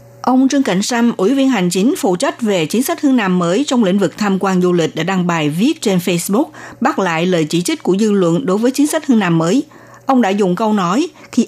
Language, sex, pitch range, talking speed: Vietnamese, female, 175-235 Hz, 260 wpm